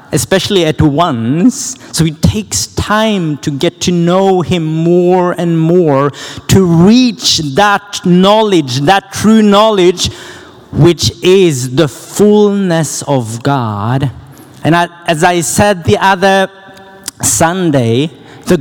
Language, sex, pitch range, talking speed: Swedish, male, 130-195 Hz, 115 wpm